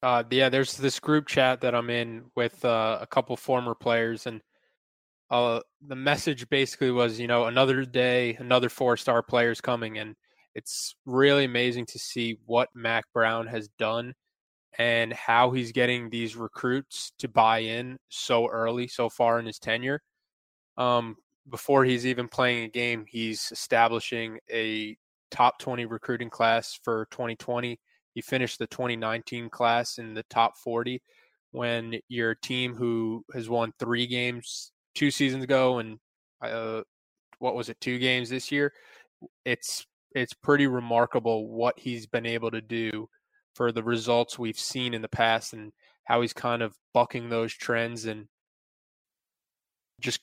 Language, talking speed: English, 155 wpm